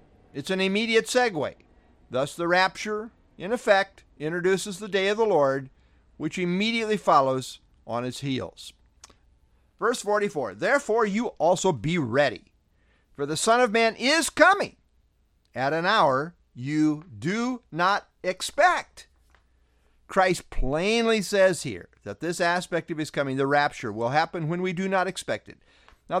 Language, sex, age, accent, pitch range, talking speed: English, male, 50-69, American, 130-205 Hz, 145 wpm